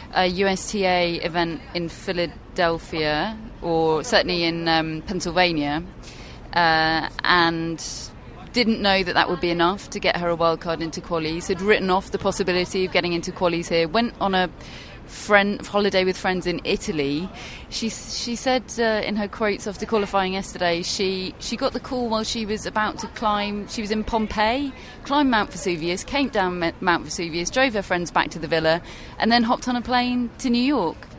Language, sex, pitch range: English, female, 170-220 Hz